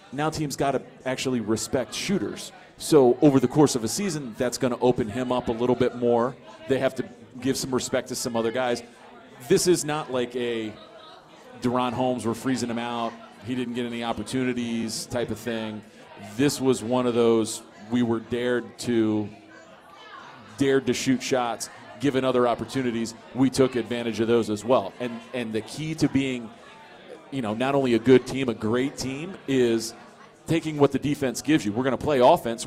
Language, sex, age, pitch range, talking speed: English, male, 40-59, 120-135 Hz, 190 wpm